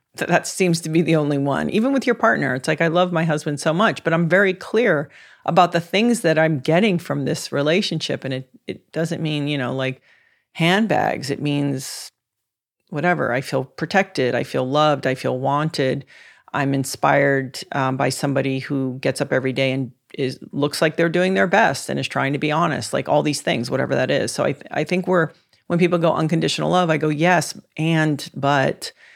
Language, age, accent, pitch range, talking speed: English, 40-59, American, 140-175 Hz, 210 wpm